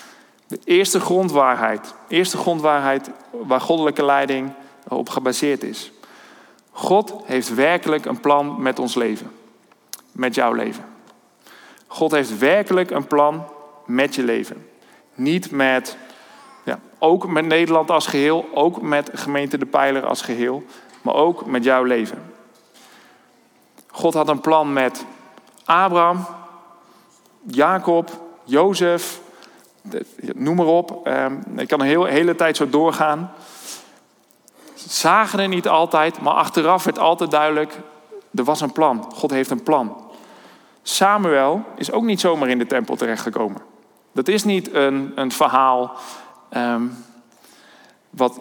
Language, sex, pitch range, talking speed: Dutch, male, 135-175 Hz, 130 wpm